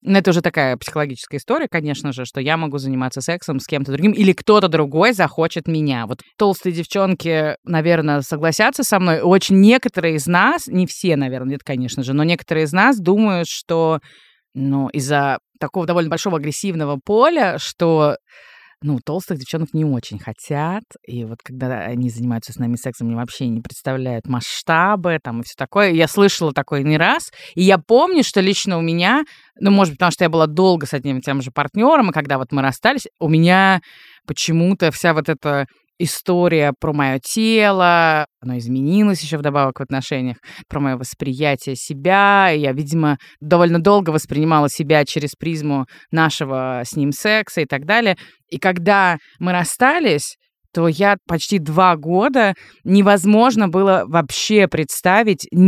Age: 20-39